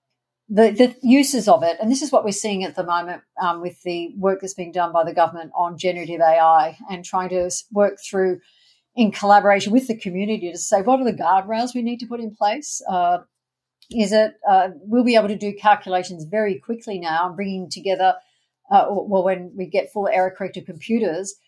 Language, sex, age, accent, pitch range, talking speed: English, female, 50-69, Australian, 180-220 Hz, 205 wpm